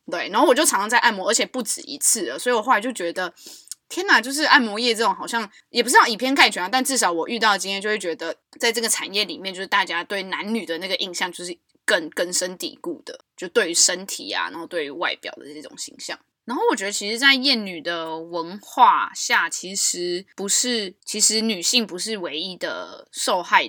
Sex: female